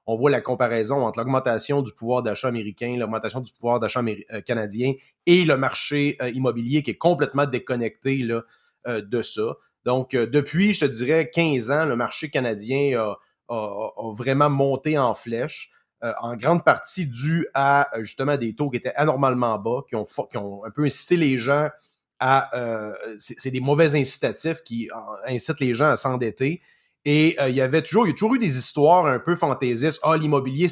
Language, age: French, 30-49